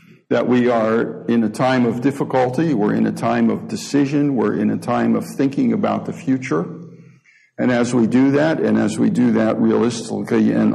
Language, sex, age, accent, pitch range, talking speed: English, male, 60-79, American, 120-165 Hz, 195 wpm